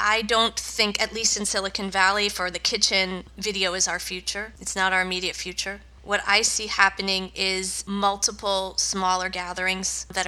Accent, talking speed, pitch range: American, 170 wpm, 190-215 Hz